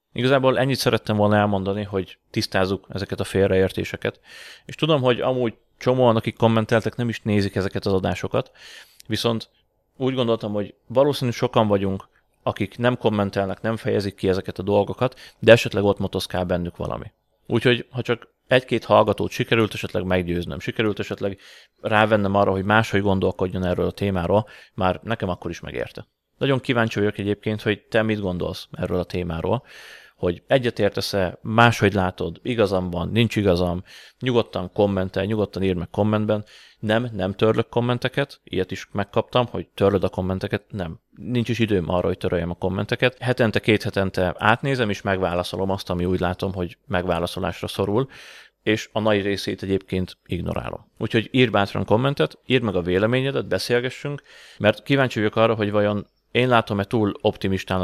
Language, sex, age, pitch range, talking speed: Hungarian, male, 30-49, 95-115 Hz, 155 wpm